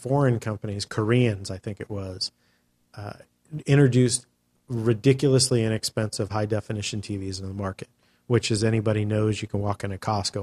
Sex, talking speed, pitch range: male, 145 wpm, 100-120 Hz